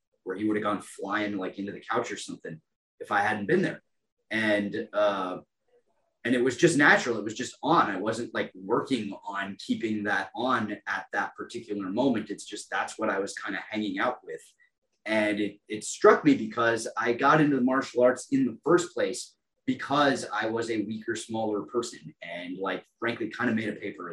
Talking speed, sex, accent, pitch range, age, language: 205 wpm, male, American, 110-160 Hz, 30-49, English